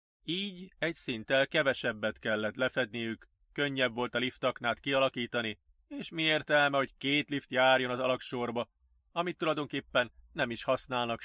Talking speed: 135 wpm